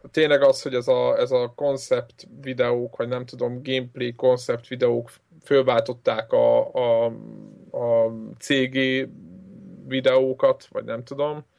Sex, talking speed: male, 125 wpm